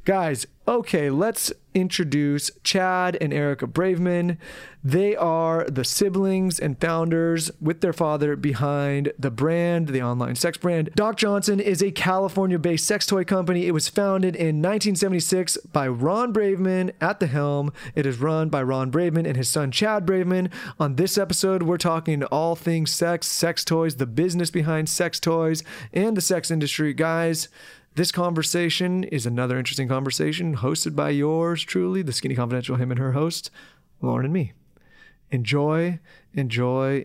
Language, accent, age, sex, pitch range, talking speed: English, American, 30-49, male, 140-185 Hz, 155 wpm